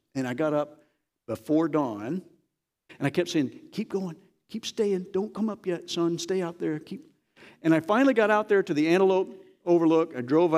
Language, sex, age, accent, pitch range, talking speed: English, male, 60-79, American, 145-190 Hz, 200 wpm